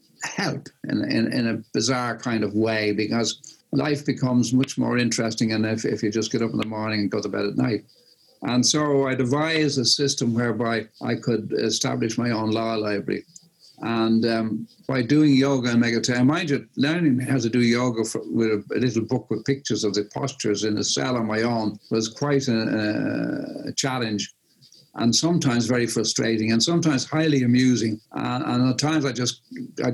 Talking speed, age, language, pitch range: 190 wpm, 60-79, English, 115-135 Hz